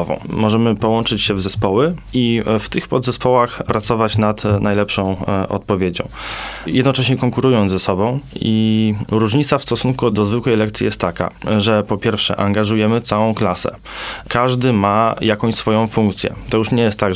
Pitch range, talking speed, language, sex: 105-125 Hz, 145 wpm, Polish, male